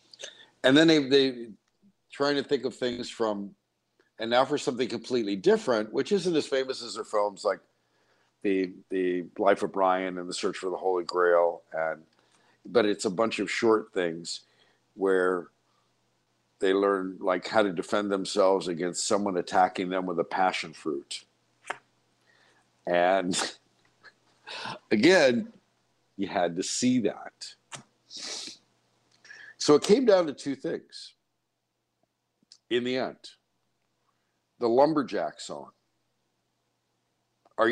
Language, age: English, 50-69